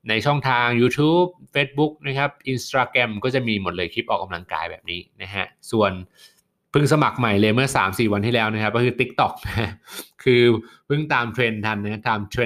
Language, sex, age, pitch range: Thai, male, 20-39, 100-120 Hz